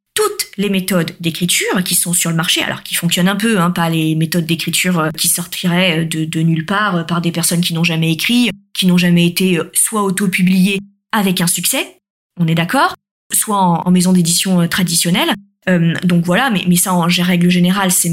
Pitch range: 175-215 Hz